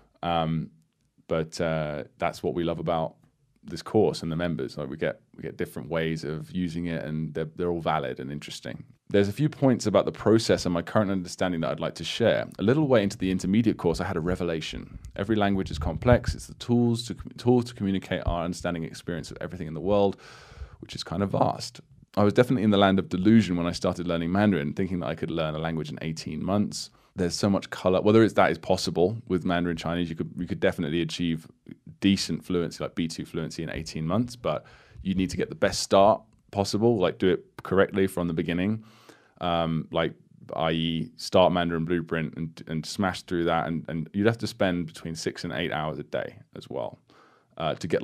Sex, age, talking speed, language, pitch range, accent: male, 20-39, 220 wpm, English, 80-100 Hz, British